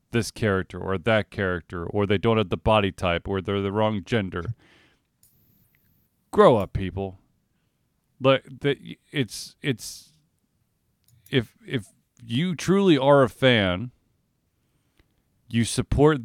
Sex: male